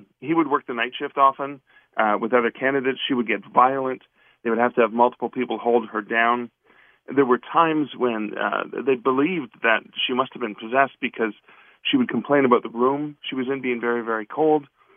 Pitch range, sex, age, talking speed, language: 115-135 Hz, male, 40-59, 210 wpm, English